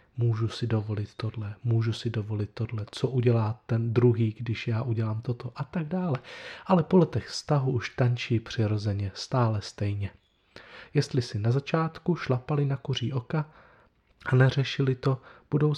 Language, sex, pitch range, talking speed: Czech, male, 110-130 Hz, 150 wpm